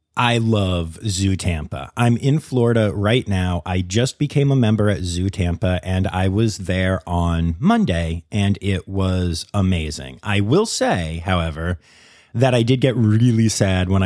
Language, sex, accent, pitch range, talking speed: English, male, American, 90-135 Hz, 160 wpm